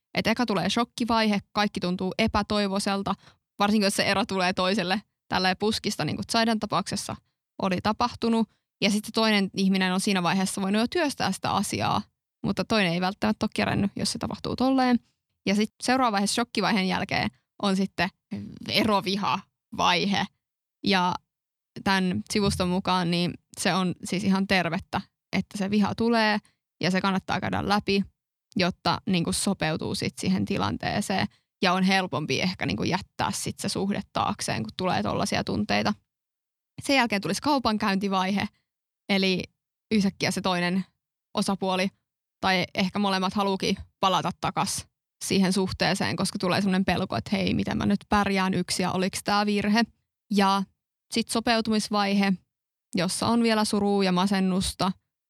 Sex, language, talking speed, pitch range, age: female, Finnish, 145 wpm, 185-210 Hz, 20-39